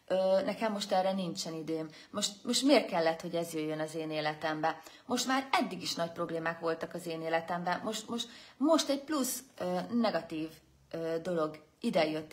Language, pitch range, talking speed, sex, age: Hungarian, 160-220 Hz, 175 wpm, female, 30-49